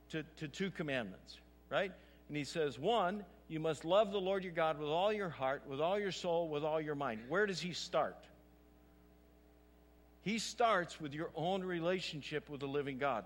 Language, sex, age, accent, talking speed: English, male, 60-79, American, 190 wpm